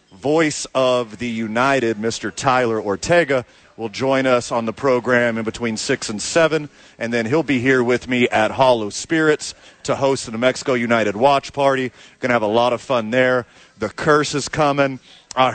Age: 40-59